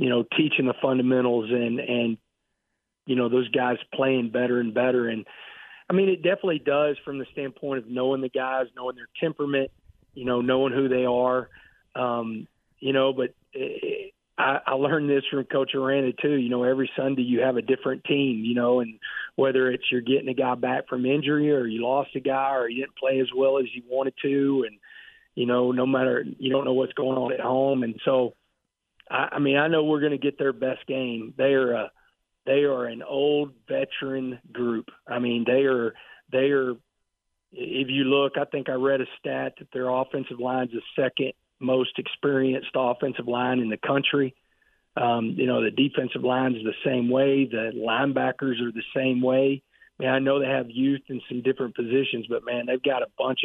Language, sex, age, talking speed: English, male, 40-59, 205 wpm